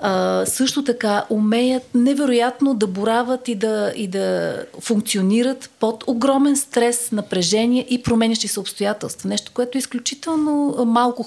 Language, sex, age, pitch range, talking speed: Bulgarian, female, 40-59, 195-240 Hz, 130 wpm